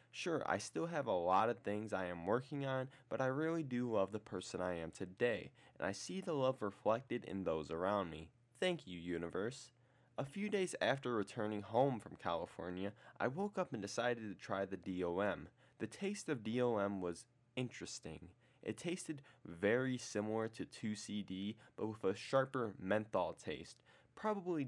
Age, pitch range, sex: 20-39, 95-135 Hz, male